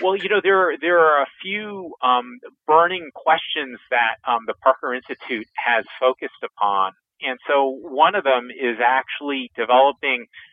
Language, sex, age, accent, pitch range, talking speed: English, male, 40-59, American, 120-145 Hz, 155 wpm